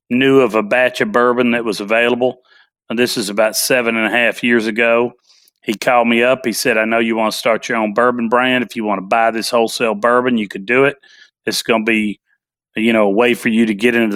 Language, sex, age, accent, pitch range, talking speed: English, male, 40-59, American, 115-135 Hz, 255 wpm